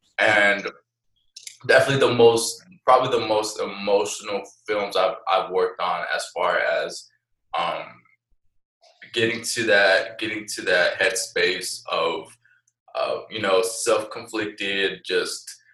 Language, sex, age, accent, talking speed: English, male, 20-39, American, 120 wpm